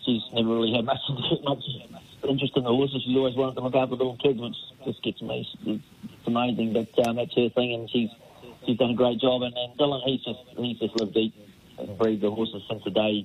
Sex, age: male, 30-49